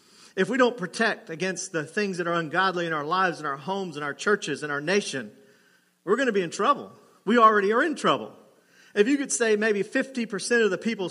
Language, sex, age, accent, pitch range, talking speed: English, male, 40-59, American, 170-220 Hz, 225 wpm